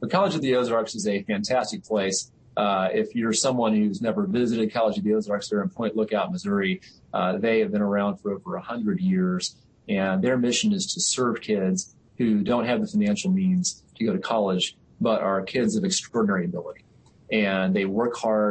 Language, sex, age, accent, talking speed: English, male, 30-49, American, 200 wpm